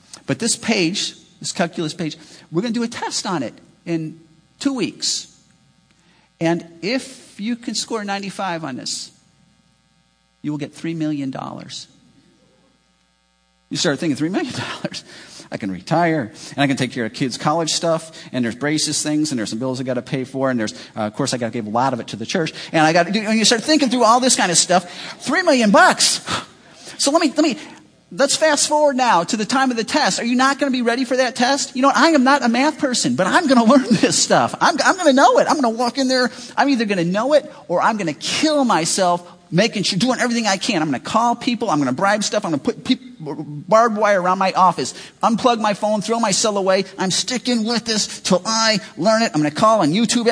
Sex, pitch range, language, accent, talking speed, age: male, 170-260 Hz, English, American, 240 wpm, 40-59